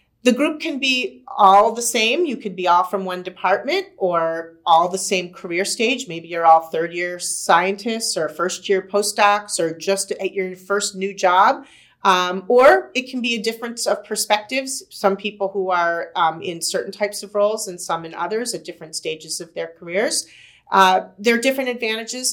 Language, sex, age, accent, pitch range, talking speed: English, female, 40-59, American, 180-225 Hz, 190 wpm